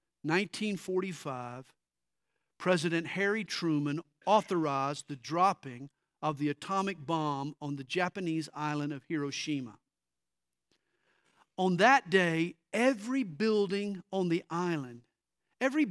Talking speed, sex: 100 wpm, male